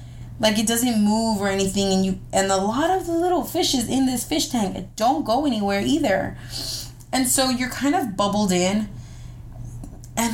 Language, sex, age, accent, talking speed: English, female, 20-39, American, 180 wpm